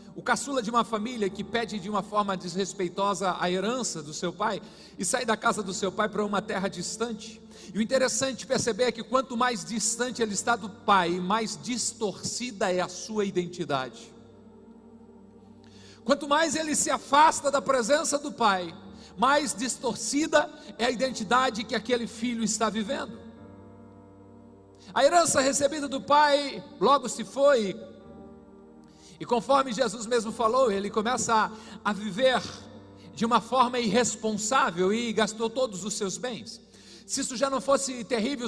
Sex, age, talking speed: male, 50-69, 155 wpm